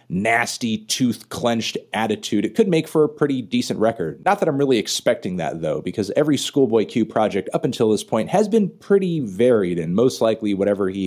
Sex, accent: male, American